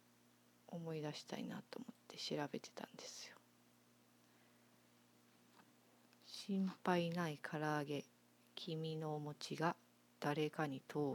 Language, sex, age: Japanese, female, 40-59